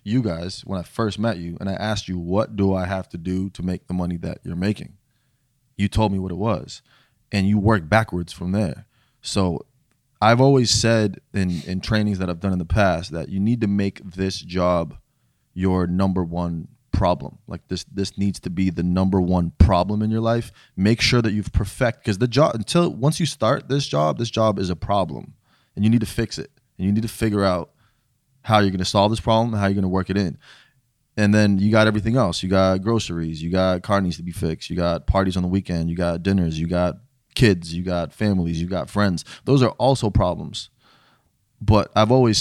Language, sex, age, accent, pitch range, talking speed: English, male, 20-39, American, 90-115 Hz, 225 wpm